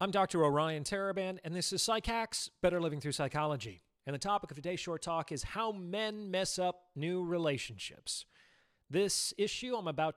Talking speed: 175 wpm